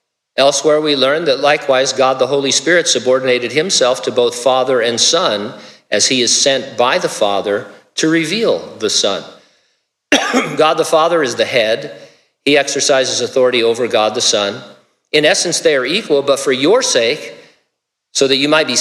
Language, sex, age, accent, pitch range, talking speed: English, male, 50-69, American, 125-175 Hz, 170 wpm